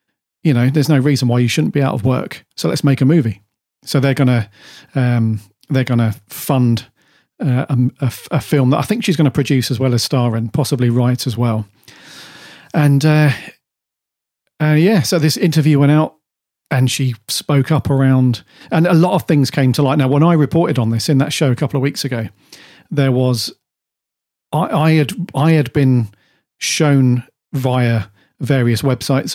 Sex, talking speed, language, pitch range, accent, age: male, 190 wpm, English, 120-150 Hz, British, 40-59